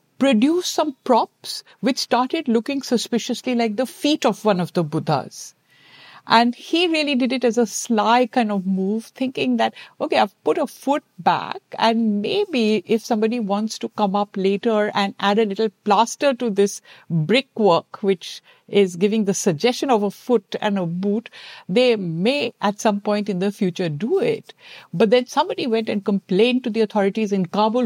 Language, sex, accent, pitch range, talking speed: English, female, Indian, 200-245 Hz, 180 wpm